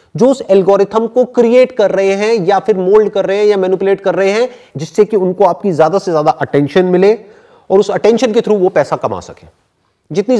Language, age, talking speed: Hindi, 30-49, 220 wpm